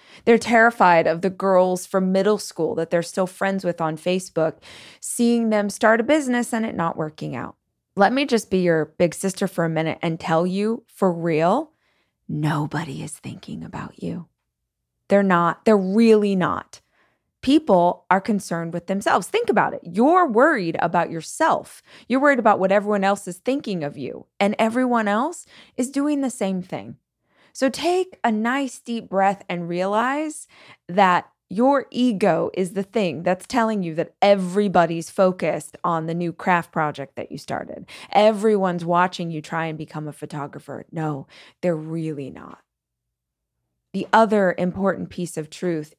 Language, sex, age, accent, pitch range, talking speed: English, female, 20-39, American, 165-220 Hz, 165 wpm